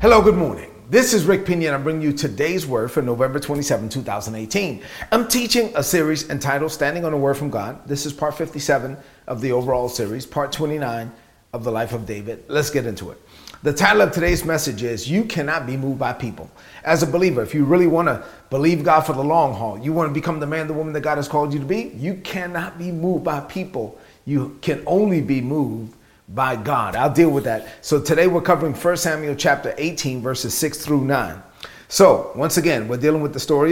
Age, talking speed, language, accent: 30-49, 220 wpm, English, American